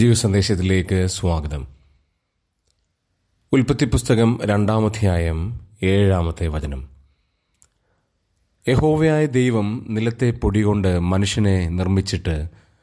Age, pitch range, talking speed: 30-49, 90-125 Hz, 65 wpm